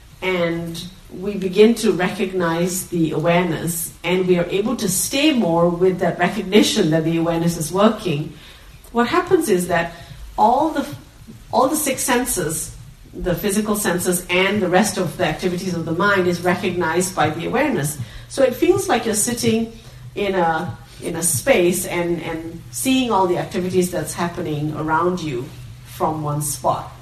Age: 50-69